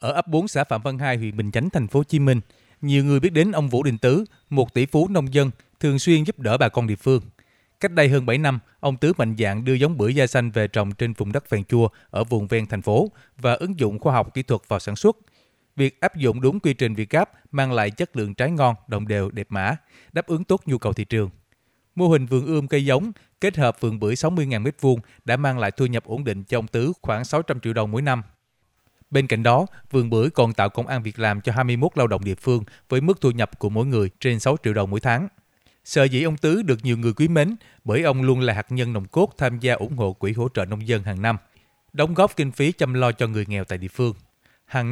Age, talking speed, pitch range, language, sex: 20-39, 265 wpm, 110-140 Hz, Vietnamese, male